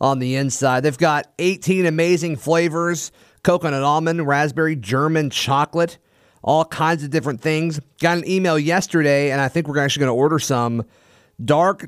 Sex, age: male, 30-49